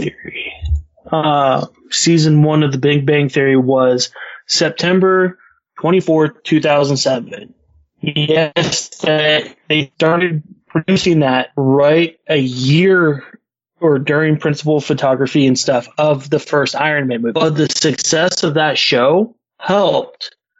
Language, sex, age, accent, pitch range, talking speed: English, male, 20-39, American, 135-165 Hz, 115 wpm